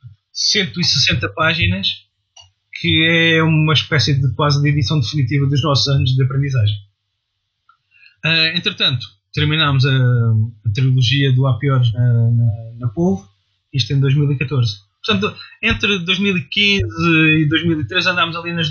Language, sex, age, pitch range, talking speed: Portuguese, male, 20-39, 115-160 Hz, 125 wpm